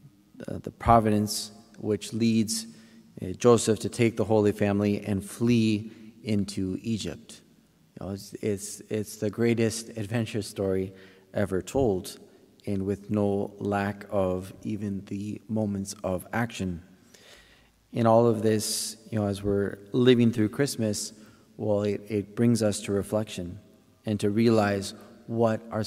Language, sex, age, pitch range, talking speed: English, male, 30-49, 100-110 Hz, 135 wpm